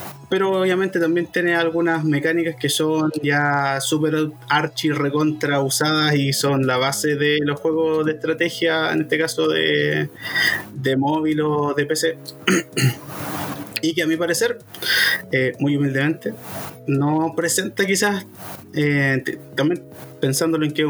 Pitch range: 135-160 Hz